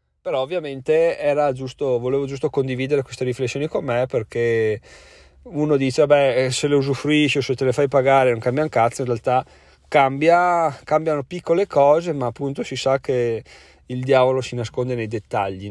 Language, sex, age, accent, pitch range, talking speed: Italian, male, 30-49, native, 115-140 Hz, 170 wpm